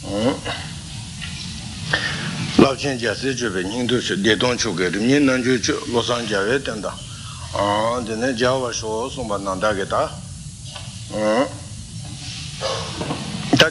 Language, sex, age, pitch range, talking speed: Italian, male, 60-79, 110-135 Hz, 130 wpm